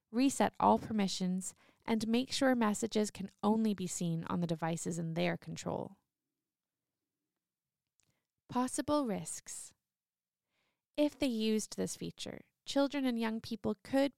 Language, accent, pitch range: English, American, 180-240 Hz